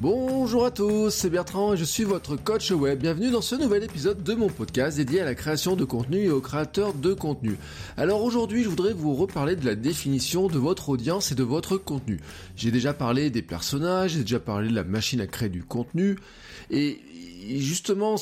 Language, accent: French, French